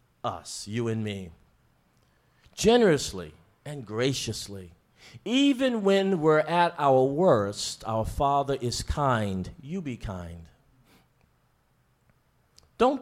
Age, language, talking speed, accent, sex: 50-69, English, 95 wpm, American, male